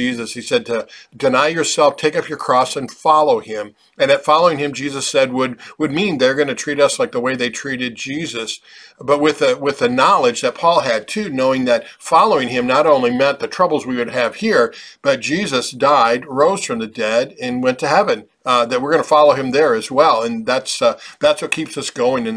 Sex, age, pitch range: male, 50-69, 120-155 Hz